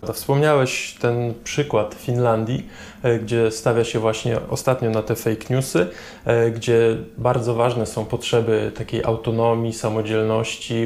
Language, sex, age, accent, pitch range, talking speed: Polish, male, 20-39, native, 115-125 Hz, 125 wpm